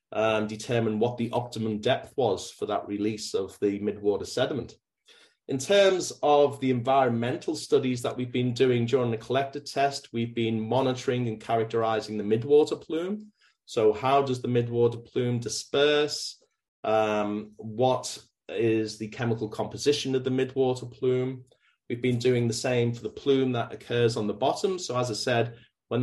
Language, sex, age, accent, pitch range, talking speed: English, male, 30-49, British, 110-130 Hz, 160 wpm